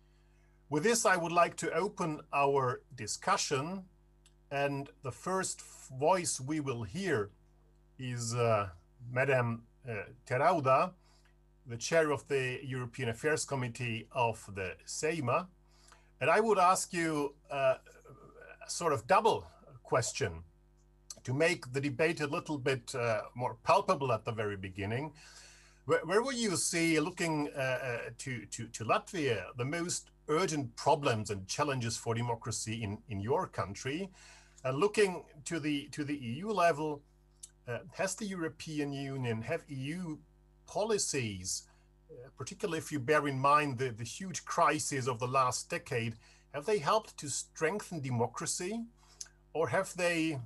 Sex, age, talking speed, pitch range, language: male, 50-69, 140 wpm, 120-165 Hz, English